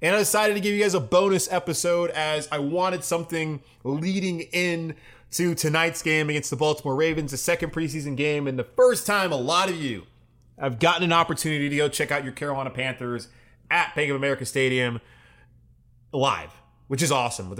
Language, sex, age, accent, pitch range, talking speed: English, male, 20-39, American, 115-150 Hz, 190 wpm